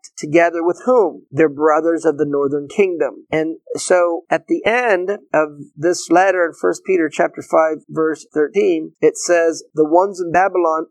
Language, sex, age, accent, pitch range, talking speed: English, male, 50-69, American, 150-190 Hz, 165 wpm